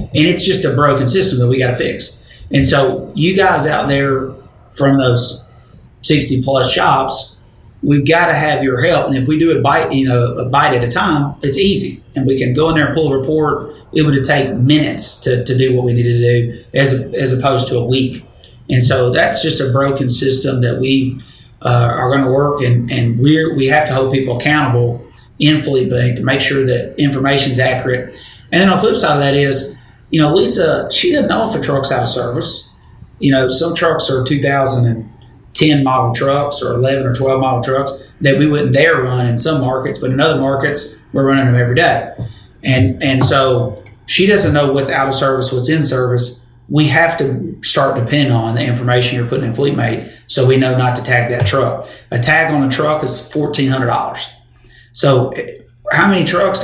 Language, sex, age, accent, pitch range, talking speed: English, male, 30-49, American, 125-145 Hz, 210 wpm